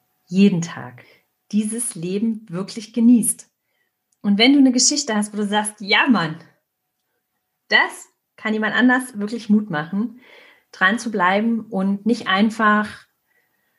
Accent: German